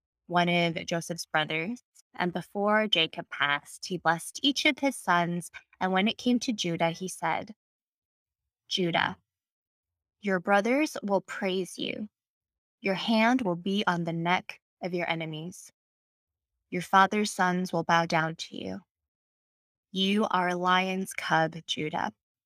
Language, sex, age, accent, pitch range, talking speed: English, female, 20-39, American, 165-200 Hz, 140 wpm